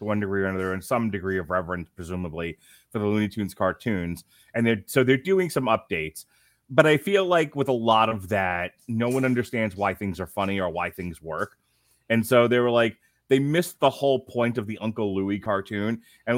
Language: English